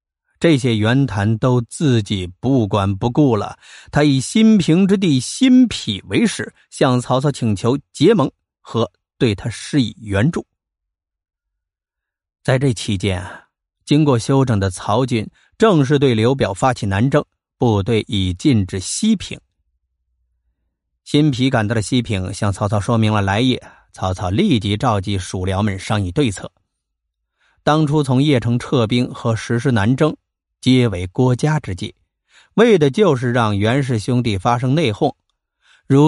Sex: male